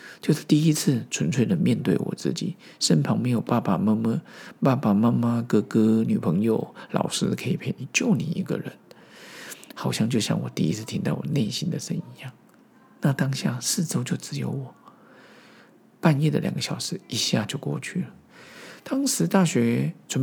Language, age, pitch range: Chinese, 50-69, 140-180 Hz